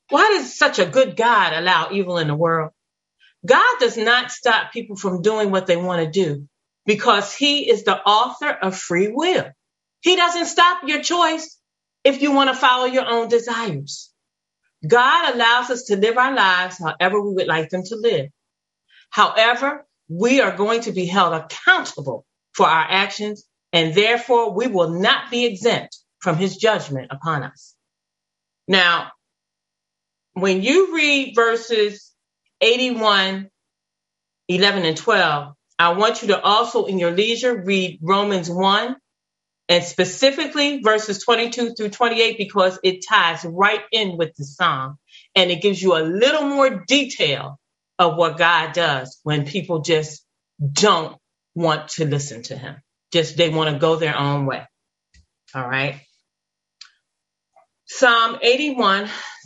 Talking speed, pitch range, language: 150 wpm, 170-240 Hz, English